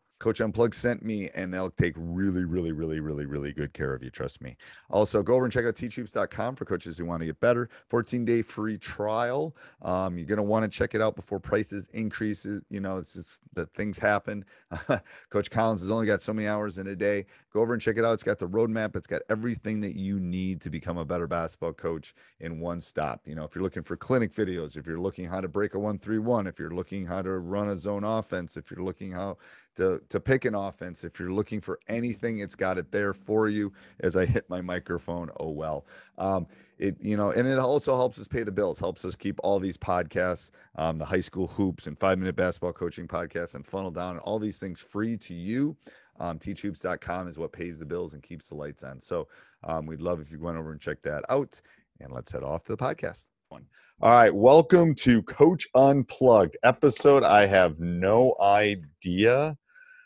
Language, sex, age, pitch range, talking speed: English, male, 30-49, 85-110 Hz, 225 wpm